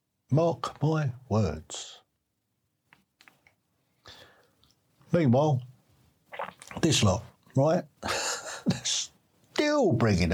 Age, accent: 60-79, British